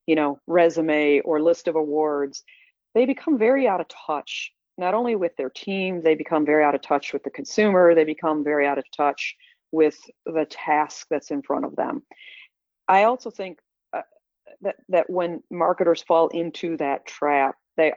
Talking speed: 175 wpm